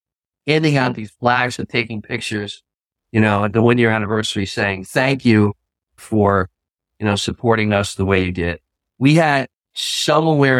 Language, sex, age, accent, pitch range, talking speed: English, male, 50-69, American, 100-125 Hz, 165 wpm